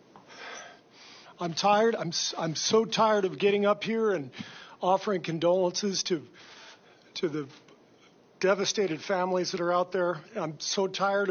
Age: 40-59